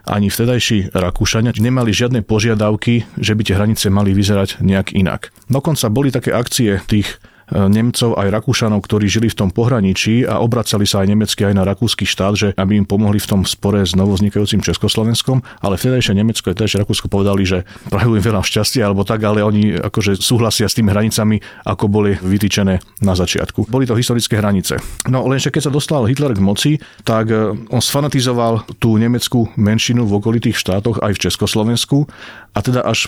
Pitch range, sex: 100-115 Hz, male